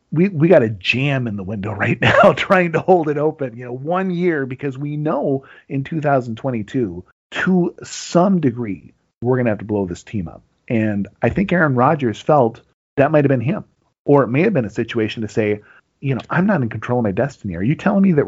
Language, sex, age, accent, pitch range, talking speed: English, male, 40-59, American, 115-165 Hz, 230 wpm